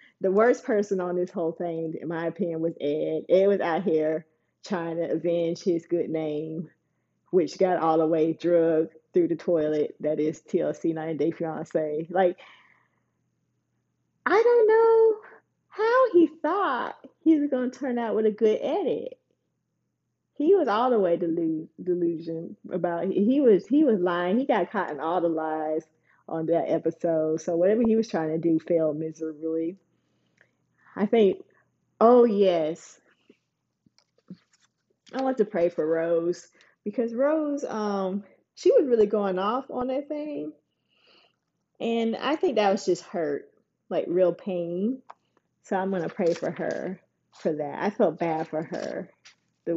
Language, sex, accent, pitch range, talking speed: English, female, American, 160-220 Hz, 160 wpm